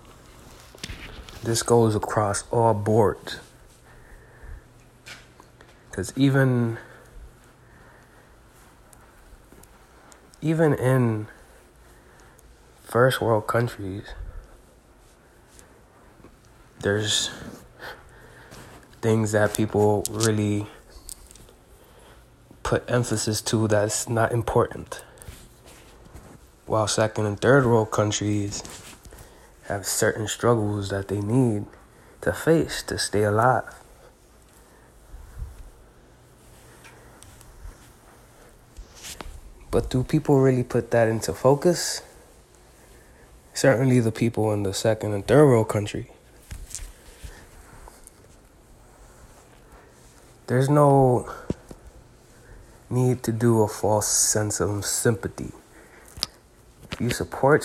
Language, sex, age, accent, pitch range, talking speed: English, male, 20-39, American, 105-125 Hz, 75 wpm